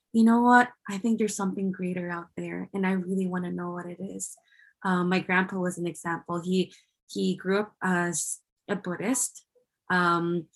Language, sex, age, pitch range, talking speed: English, female, 20-39, 185-220 Hz, 190 wpm